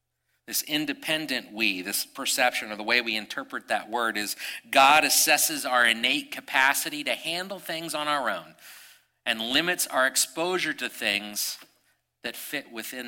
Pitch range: 105-155 Hz